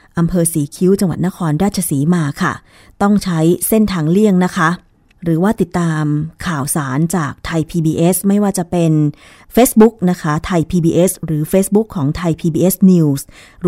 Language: Thai